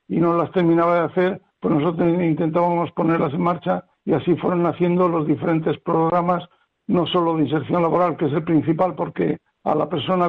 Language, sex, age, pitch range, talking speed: Spanish, male, 60-79, 165-180 Hz, 185 wpm